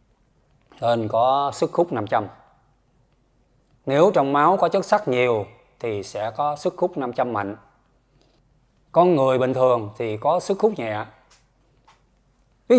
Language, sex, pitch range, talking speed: Vietnamese, male, 125-180 Hz, 135 wpm